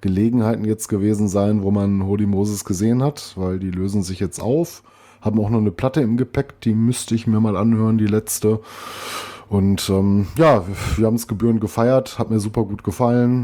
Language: German